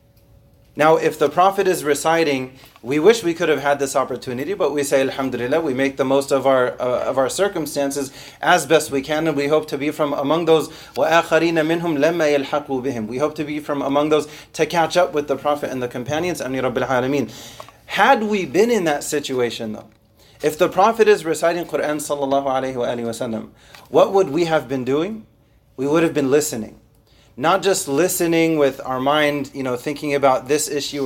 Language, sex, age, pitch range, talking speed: English, male, 30-49, 140-175 Hz, 185 wpm